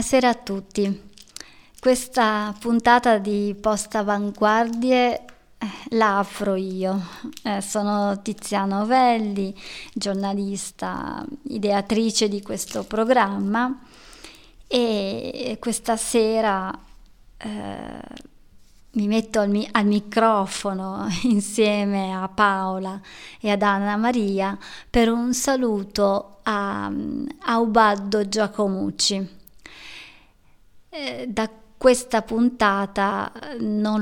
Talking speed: 85 wpm